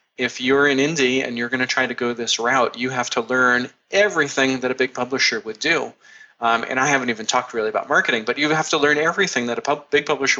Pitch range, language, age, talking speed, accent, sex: 120-145 Hz, English, 30-49, 255 wpm, American, male